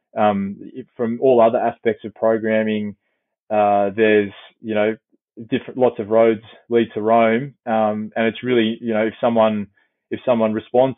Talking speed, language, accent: 170 wpm, English, Australian